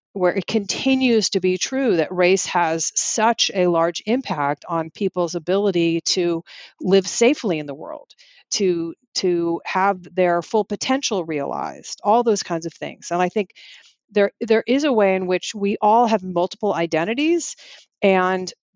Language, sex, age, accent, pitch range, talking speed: English, female, 40-59, American, 170-210 Hz, 165 wpm